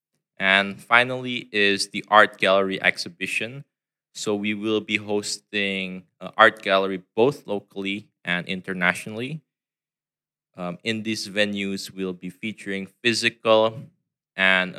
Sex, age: male, 20-39